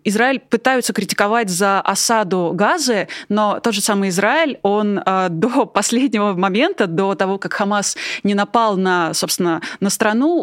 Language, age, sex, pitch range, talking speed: Russian, 20-39, female, 205-255 Hz, 145 wpm